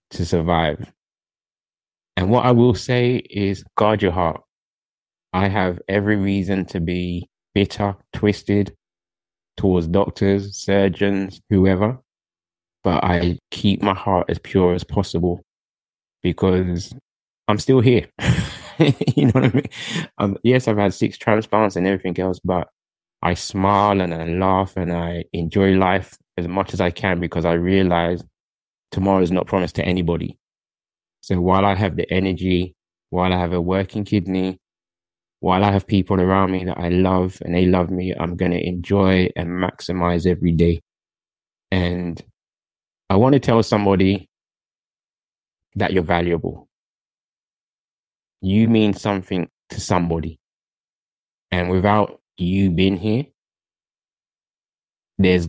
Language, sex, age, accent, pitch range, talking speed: English, male, 20-39, British, 85-100 Hz, 135 wpm